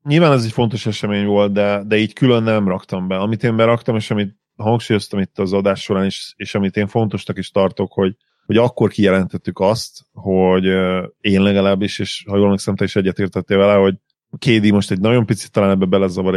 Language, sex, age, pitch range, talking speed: Hungarian, male, 30-49, 95-110 Hz, 200 wpm